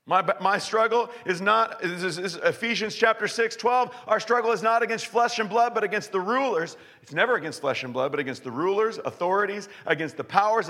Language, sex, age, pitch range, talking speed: English, male, 40-59, 155-235 Hz, 220 wpm